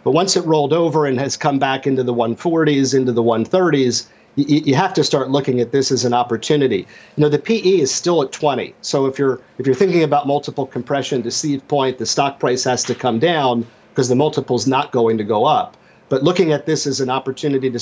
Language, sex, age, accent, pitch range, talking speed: English, male, 50-69, American, 125-150 Hz, 235 wpm